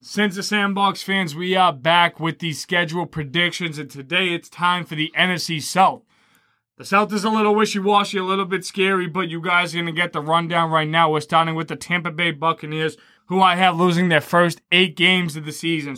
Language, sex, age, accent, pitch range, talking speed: English, male, 20-39, American, 155-180 Hz, 220 wpm